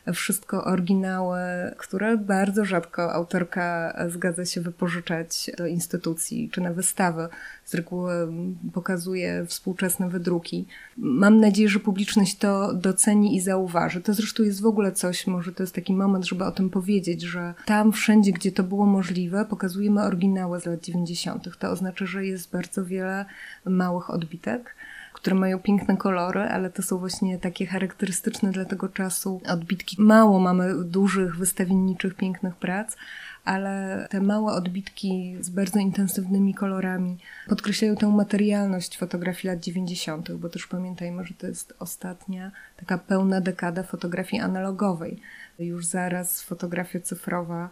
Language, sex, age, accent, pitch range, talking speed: Polish, female, 20-39, native, 180-200 Hz, 140 wpm